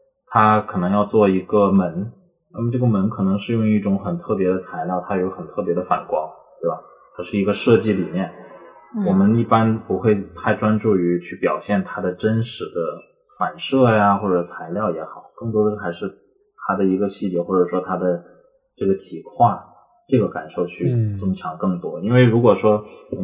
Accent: native